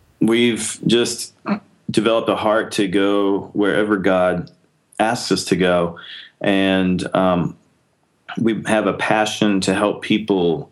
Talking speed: 125 wpm